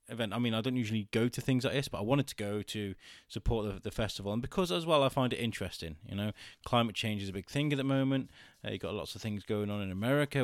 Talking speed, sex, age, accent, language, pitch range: 290 wpm, male, 20-39, British, English, 100-120 Hz